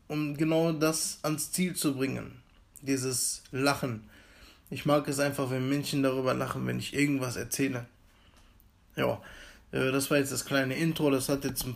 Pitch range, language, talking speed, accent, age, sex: 125-150 Hz, German, 165 wpm, German, 20-39, male